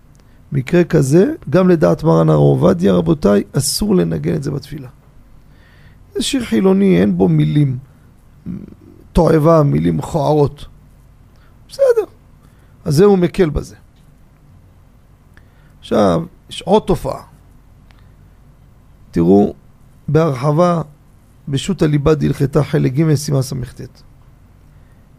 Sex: male